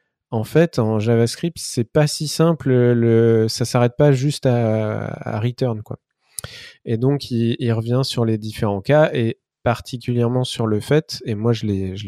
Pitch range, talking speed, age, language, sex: 105-140 Hz, 180 wpm, 20-39, French, male